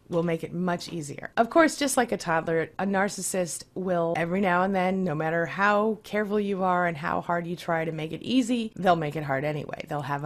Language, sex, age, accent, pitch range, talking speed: English, female, 30-49, American, 160-215 Hz, 235 wpm